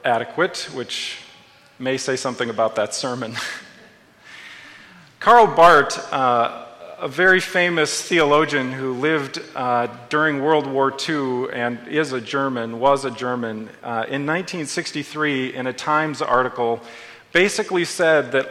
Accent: American